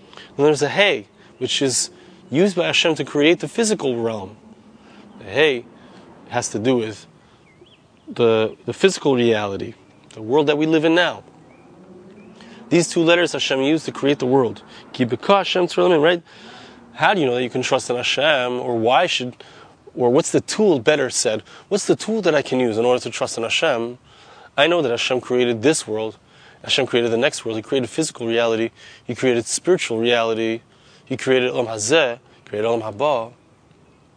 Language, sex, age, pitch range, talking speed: English, male, 30-49, 115-155 Hz, 185 wpm